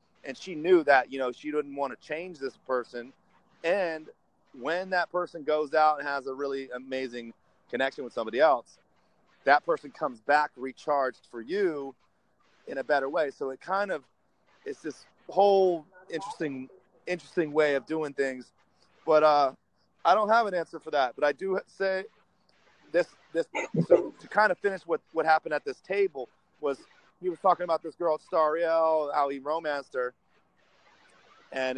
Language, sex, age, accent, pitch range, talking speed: English, male, 30-49, American, 130-170 Hz, 170 wpm